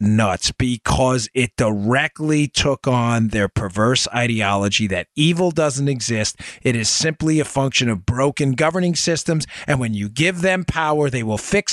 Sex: male